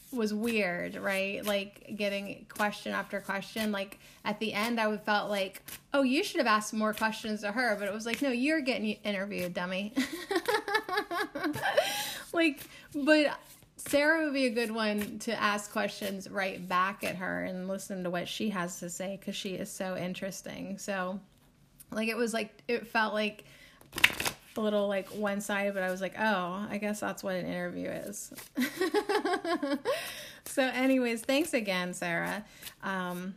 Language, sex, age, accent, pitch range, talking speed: English, female, 10-29, American, 185-230 Hz, 160 wpm